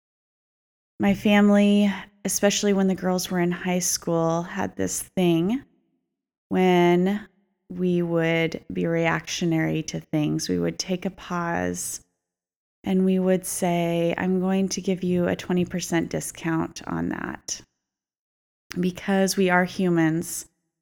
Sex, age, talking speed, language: female, 20-39, 125 wpm, English